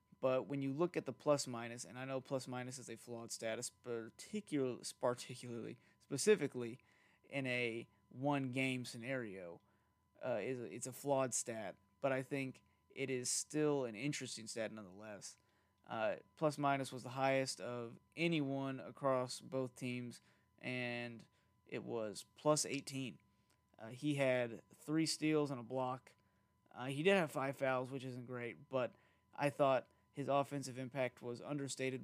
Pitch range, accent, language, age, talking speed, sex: 115-135 Hz, American, English, 30-49, 140 wpm, male